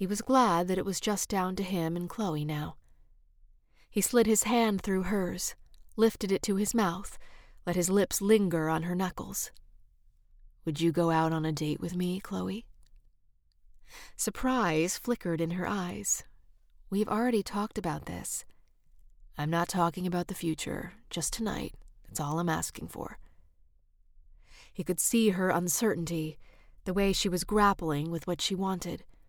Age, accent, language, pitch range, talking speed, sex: 30-49, American, English, 160-205 Hz, 160 wpm, female